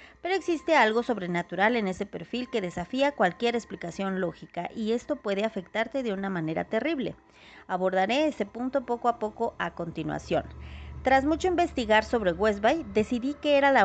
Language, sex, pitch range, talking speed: Spanish, female, 185-265 Hz, 160 wpm